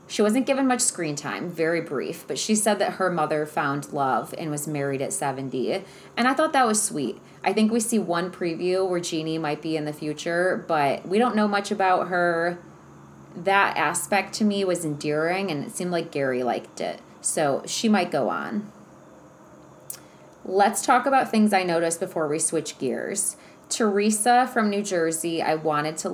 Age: 30-49